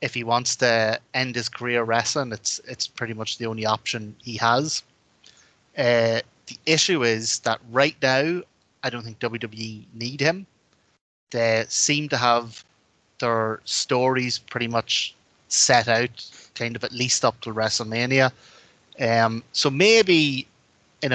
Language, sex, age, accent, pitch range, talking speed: English, male, 20-39, Irish, 115-130 Hz, 145 wpm